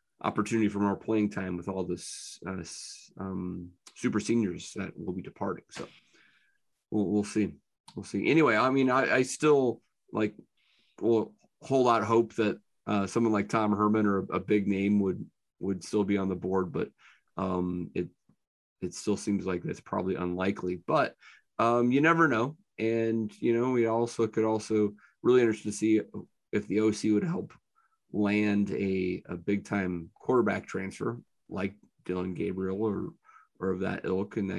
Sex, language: male, English